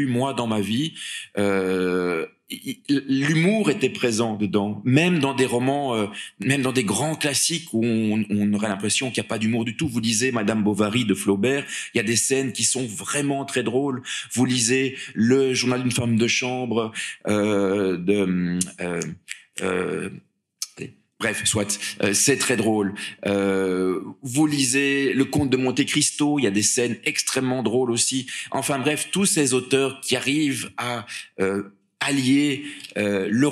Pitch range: 105-135 Hz